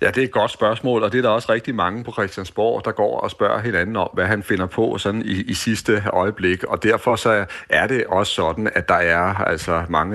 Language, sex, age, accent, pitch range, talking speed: Danish, male, 40-59, native, 85-100 Hz, 250 wpm